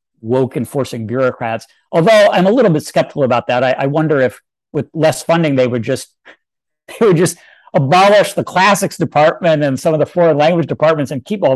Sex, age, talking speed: male, 50-69, 195 wpm